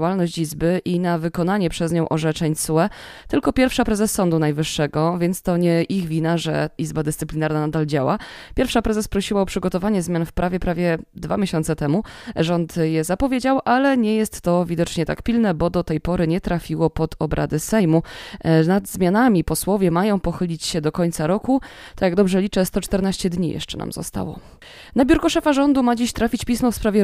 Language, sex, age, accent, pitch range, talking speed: Polish, female, 20-39, native, 165-205 Hz, 180 wpm